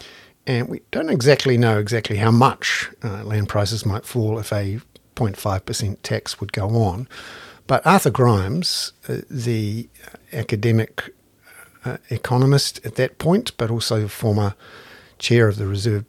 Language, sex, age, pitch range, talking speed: English, male, 50-69, 105-130 Hz, 140 wpm